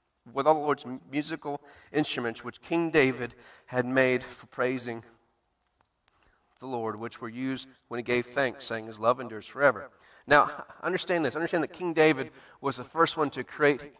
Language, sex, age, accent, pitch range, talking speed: English, male, 40-59, American, 120-155 Hz, 170 wpm